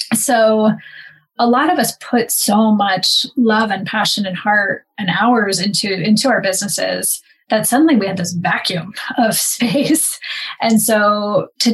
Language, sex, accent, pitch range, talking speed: English, female, American, 195-235 Hz, 155 wpm